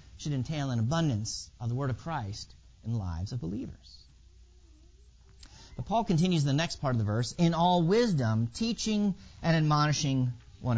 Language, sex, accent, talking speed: English, male, American, 175 wpm